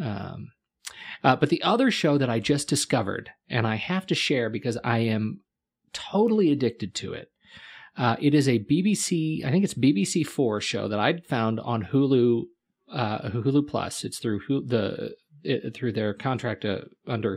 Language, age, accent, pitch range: English, 40-59, American, 110-140 Hz